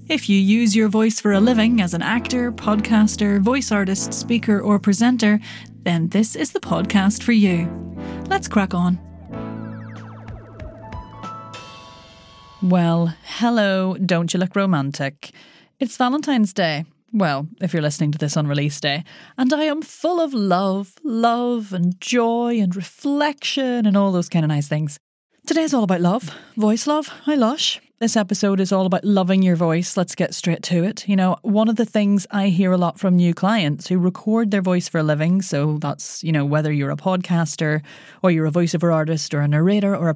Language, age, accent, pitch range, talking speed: English, 30-49, Irish, 160-220 Hz, 180 wpm